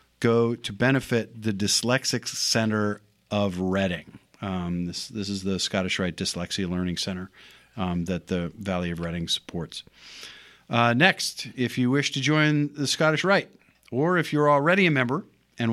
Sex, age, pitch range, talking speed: male, 50-69, 100-130 Hz, 155 wpm